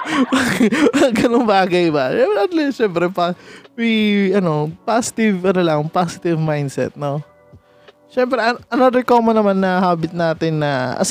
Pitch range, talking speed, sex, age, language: 145-210 Hz, 135 wpm, male, 20-39, Filipino